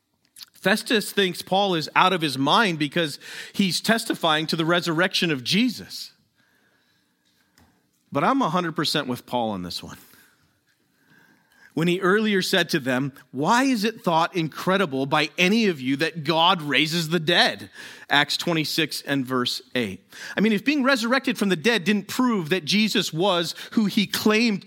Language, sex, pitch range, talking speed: English, male, 145-210 Hz, 160 wpm